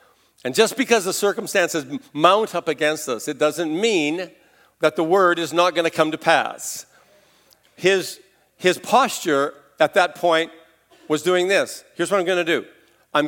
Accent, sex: American, male